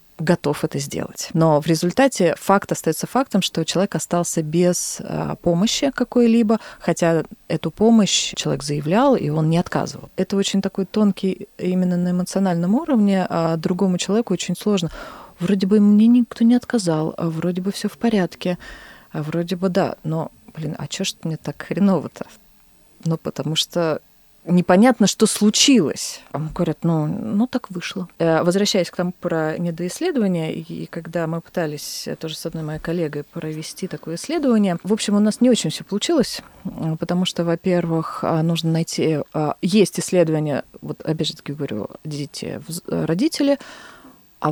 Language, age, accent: Russian, 20-39, native